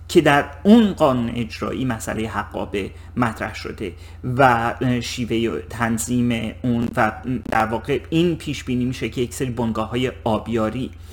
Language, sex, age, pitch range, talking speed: Persian, male, 30-49, 110-135 Hz, 130 wpm